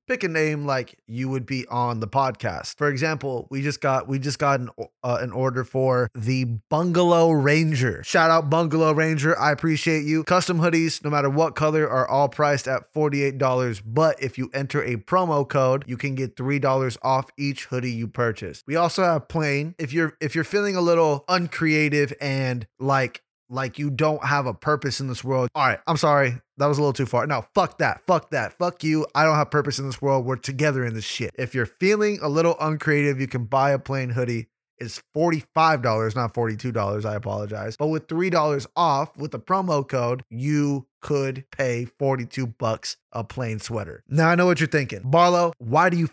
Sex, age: male, 20-39